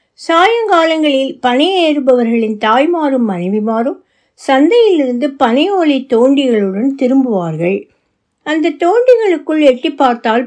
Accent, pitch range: native, 225-315 Hz